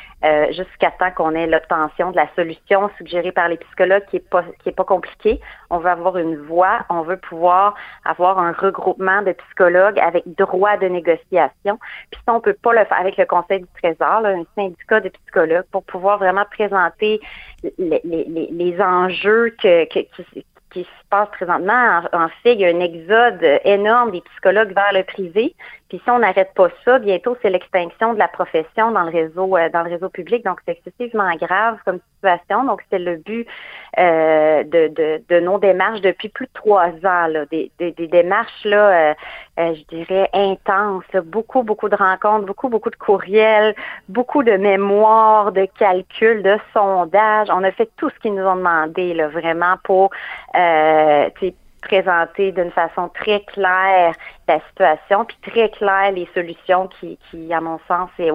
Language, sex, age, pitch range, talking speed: French, female, 40-59, 175-210 Hz, 185 wpm